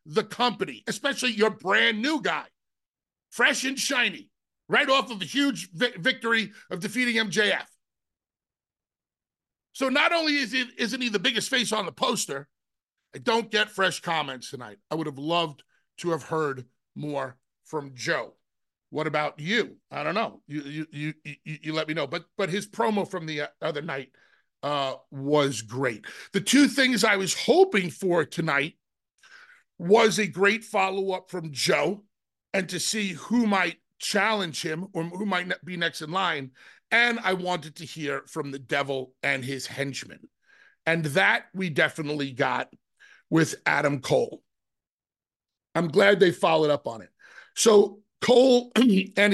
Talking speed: 160 wpm